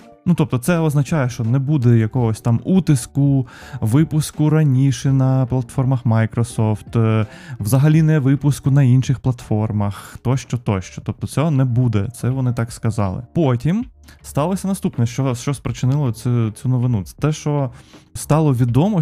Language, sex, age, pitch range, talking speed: Ukrainian, male, 20-39, 115-140 Hz, 140 wpm